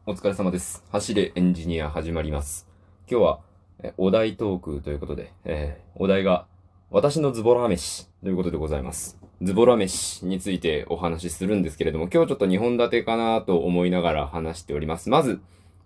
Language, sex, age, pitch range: Japanese, male, 20-39, 90-120 Hz